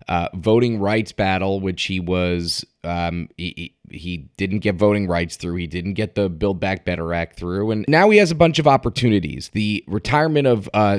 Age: 30-49